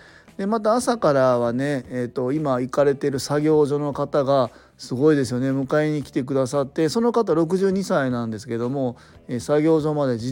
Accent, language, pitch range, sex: native, Japanese, 125-155 Hz, male